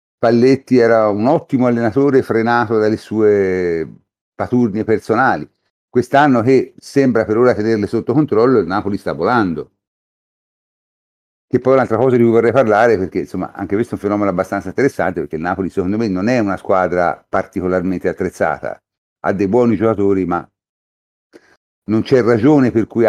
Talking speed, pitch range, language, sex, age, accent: 160 wpm, 95-120 Hz, Italian, male, 50-69, native